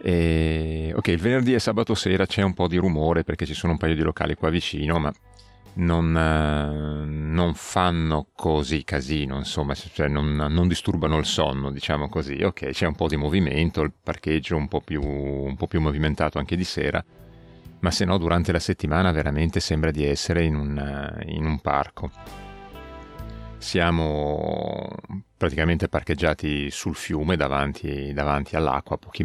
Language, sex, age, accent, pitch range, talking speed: Italian, male, 40-59, native, 75-90 Hz, 150 wpm